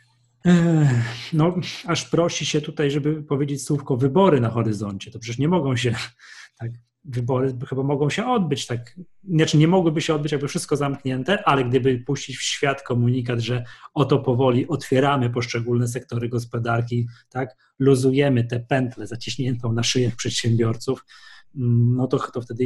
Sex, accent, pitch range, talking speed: male, native, 120-145 Hz, 145 wpm